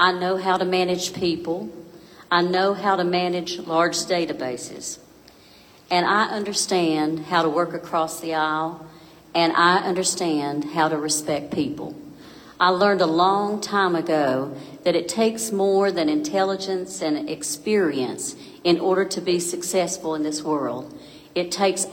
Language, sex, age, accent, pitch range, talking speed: English, female, 50-69, American, 160-190 Hz, 145 wpm